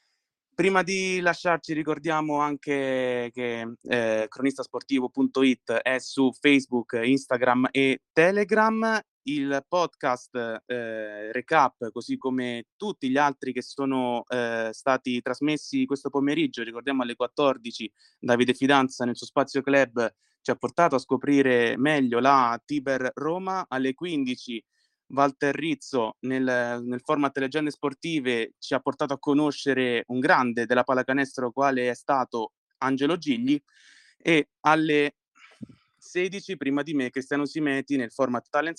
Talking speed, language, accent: 125 wpm, Italian, native